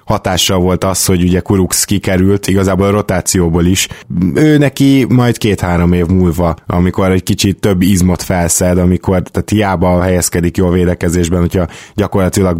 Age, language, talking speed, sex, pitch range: 20-39, Hungarian, 150 wpm, male, 90-100 Hz